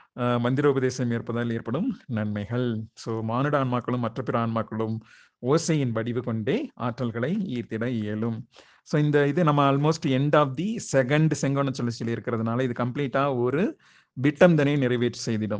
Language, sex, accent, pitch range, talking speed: Tamil, male, native, 120-145 Hz, 125 wpm